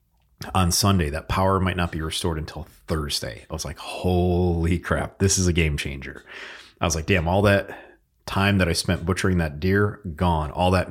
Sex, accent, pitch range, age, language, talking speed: male, American, 80-100 Hz, 30-49, English, 200 wpm